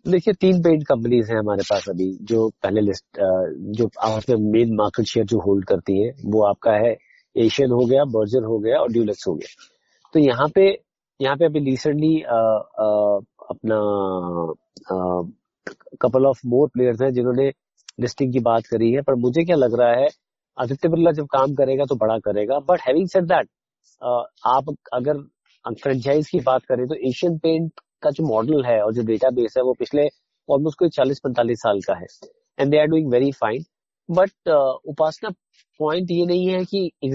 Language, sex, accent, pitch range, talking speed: Hindi, male, native, 115-155 Hz, 165 wpm